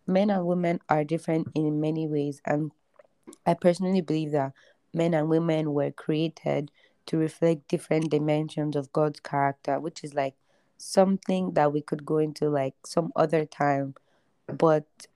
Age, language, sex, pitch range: 20-39, English, female, 150-170 Hz